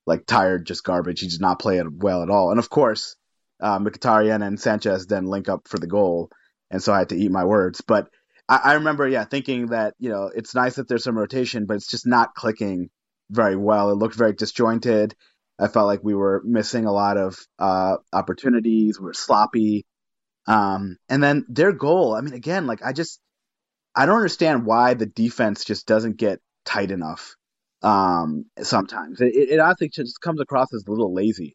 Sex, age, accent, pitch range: male, 30-49, American, 100-125 Hz